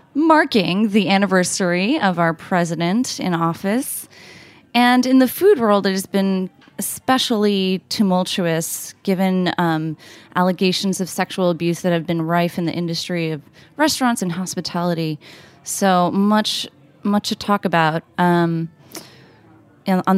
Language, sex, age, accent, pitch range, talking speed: English, female, 20-39, American, 170-220 Hz, 130 wpm